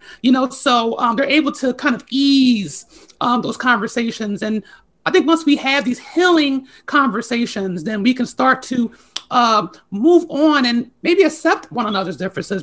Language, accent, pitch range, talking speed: English, American, 220-285 Hz, 170 wpm